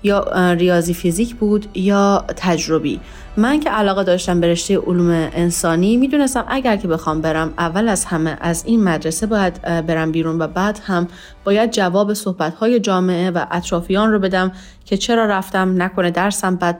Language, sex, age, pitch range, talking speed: Persian, female, 30-49, 170-205 Hz, 160 wpm